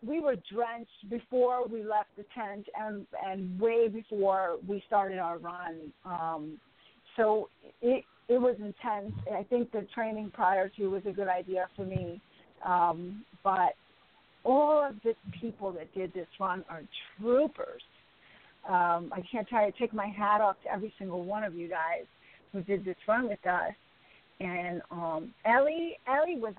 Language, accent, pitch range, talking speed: English, American, 190-245 Hz, 165 wpm